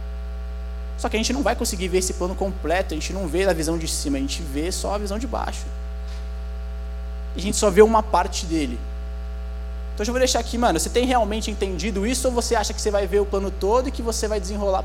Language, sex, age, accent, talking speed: Portuguese, male, 20-39, Brazilian, 250 wpm